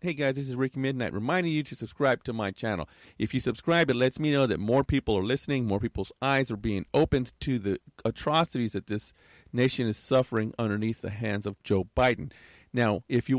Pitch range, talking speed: 110-145 Hz, 215 wpm